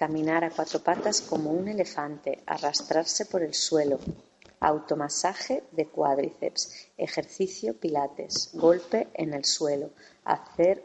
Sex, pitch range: female, 155-180 Hz